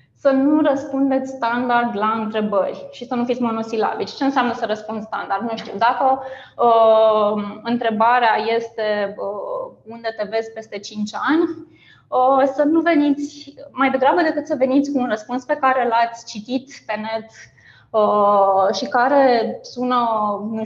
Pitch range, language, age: 220-275 Hz, Romanian, 20-39